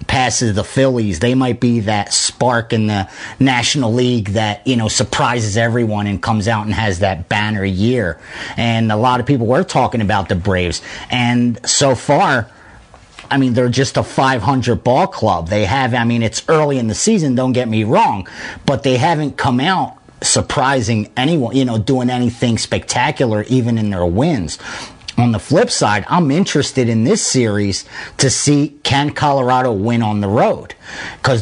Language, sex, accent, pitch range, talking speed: English, male, American, 110-140 Hz, 180 wpm